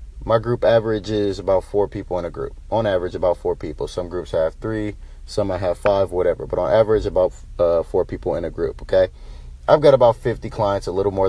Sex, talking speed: male, 230 wpm